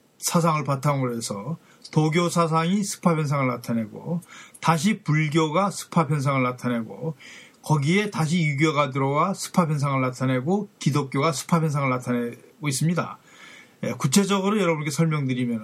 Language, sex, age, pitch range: Korean, male, 40-59, 140-185 Hz